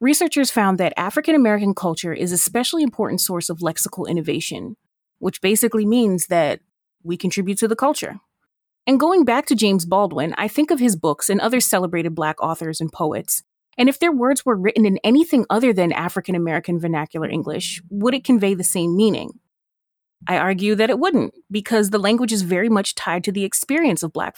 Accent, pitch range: American, 185-265 Hz